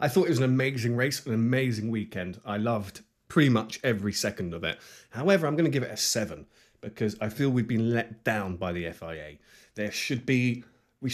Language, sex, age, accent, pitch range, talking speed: English, male, 30-49, British, 100-135 Hz, 215 wpm